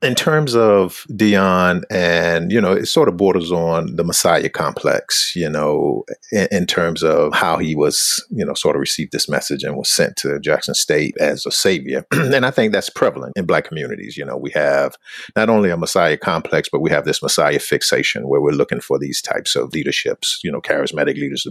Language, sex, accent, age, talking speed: English, male, American, 50-69, 210 wpm